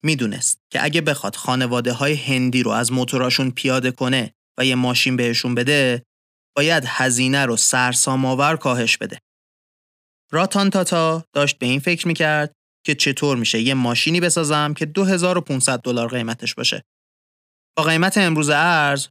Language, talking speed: Persian, 145 wpm